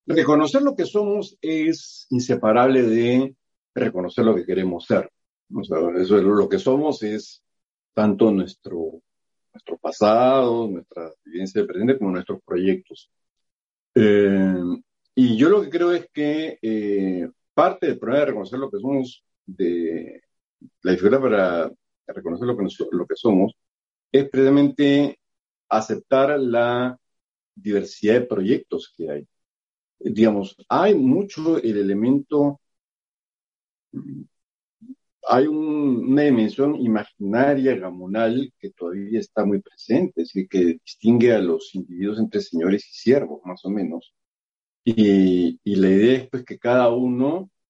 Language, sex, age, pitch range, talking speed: Spanish, male, 50-69, 95-140 Hz, 135 wpm